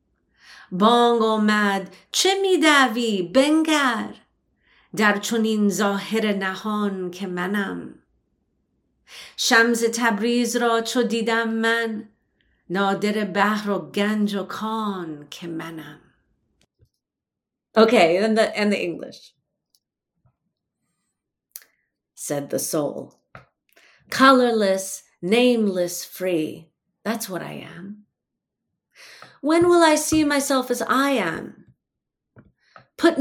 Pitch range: 190-245 Hz